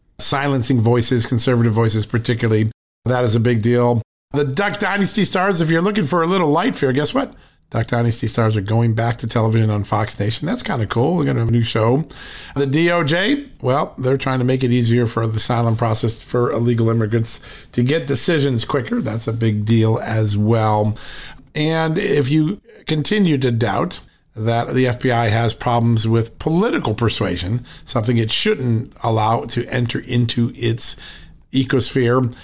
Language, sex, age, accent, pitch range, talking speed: English, male, 50-69, American, 115-140 Hz, 175 wpm